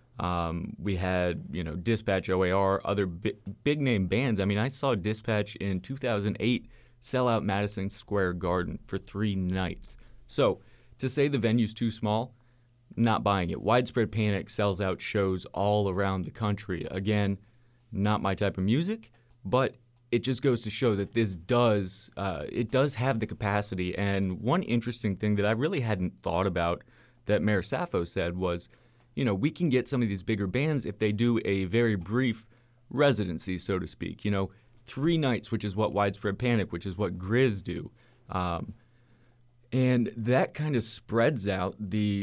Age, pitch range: 30-49, 100-120 Hz